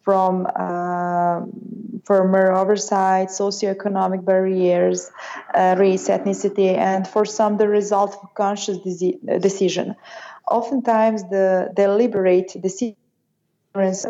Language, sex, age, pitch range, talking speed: English, female, 20-39, 185-210 Hz, 95 wpm